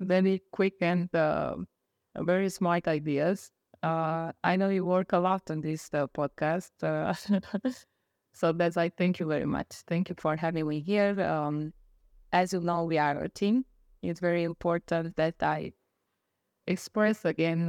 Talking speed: 160 wpm